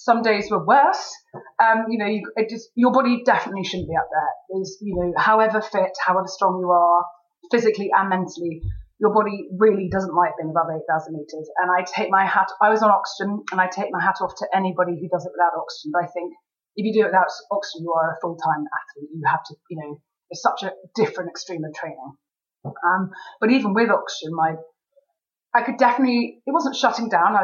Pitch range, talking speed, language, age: 175-220 Hz, 210 wpm, English, 30-49